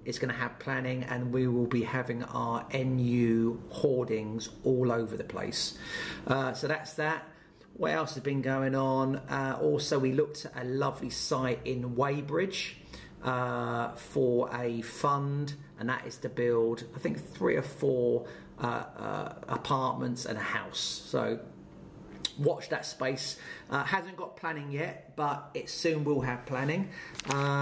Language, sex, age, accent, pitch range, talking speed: English, male, 40-59, British, 125-145 Hz, 155 wpm